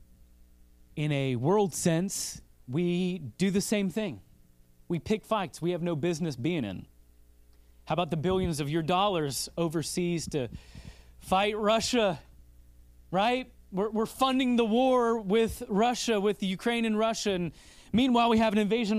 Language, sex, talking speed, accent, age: English, male, 150 wpm, American, 30-49